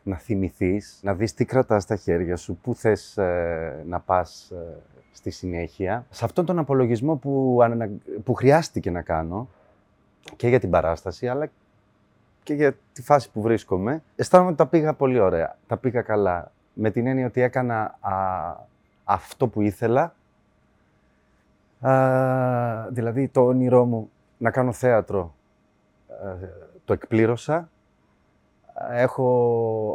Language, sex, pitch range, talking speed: Greek, male, 100-125 Hz, 140 wpm